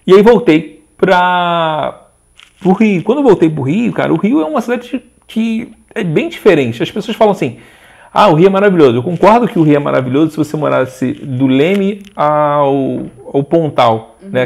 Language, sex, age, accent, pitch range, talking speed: Portuguese, male, 40-59, Brazilian, 145-205 Hz, 195 wpm